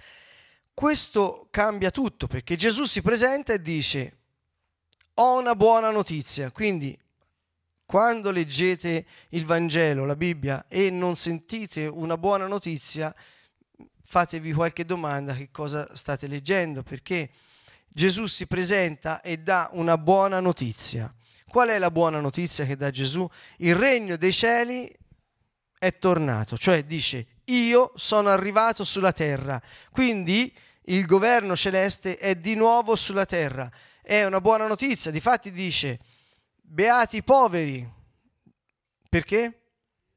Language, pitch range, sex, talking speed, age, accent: Italian, 150-210 Hz, male, 120 wpm, 30-49, native